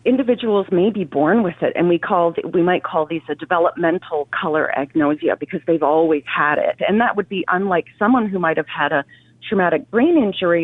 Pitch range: 155-205 Hz